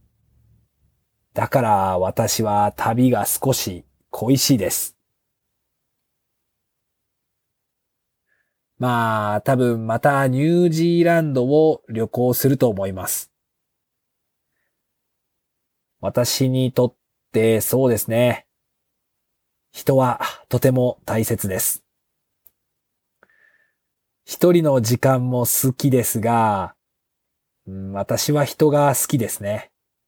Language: English